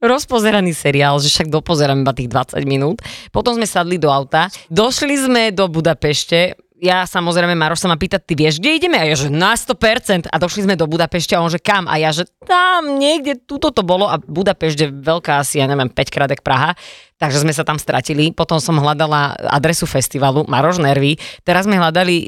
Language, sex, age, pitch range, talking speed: Slovak, female, 20-39, 150-205 Hz, 200 wpm